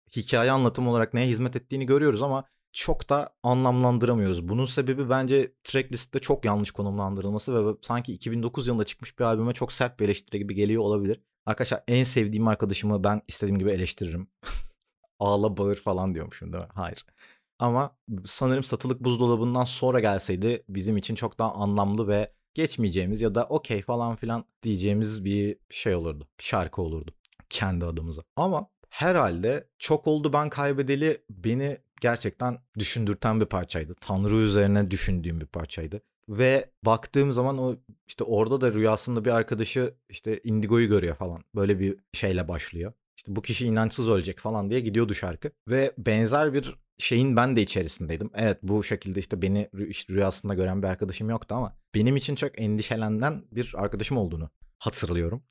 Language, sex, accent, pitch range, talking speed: Turkish, male, native, 100-125 Hz, 155 wpm